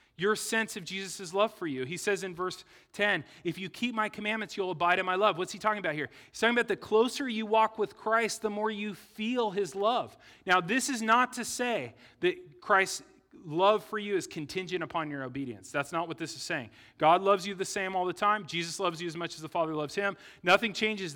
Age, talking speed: 30-49, 240 wpm